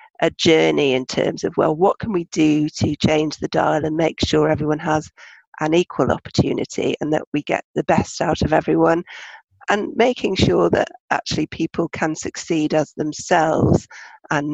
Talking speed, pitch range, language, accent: 175 wpm, 145-165 Hz, English, British